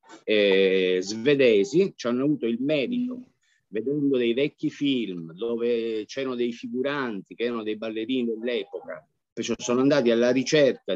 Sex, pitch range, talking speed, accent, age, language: male, 105-135 Hz, 130 wpm, native, 50-69, Italian